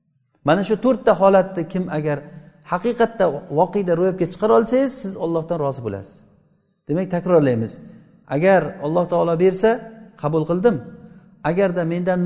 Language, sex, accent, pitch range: Russian, male, Turkish, 160-215 Hz